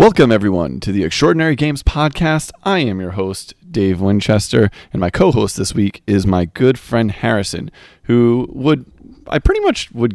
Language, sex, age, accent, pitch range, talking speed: English, male, 30-49, American, 90-115 Hz, 170 wpm